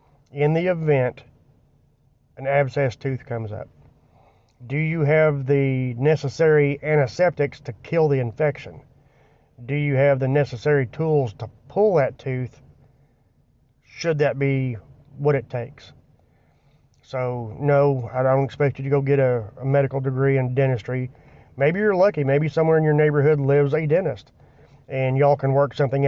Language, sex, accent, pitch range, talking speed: English, male, American, 130-150 Hz, 150 wpm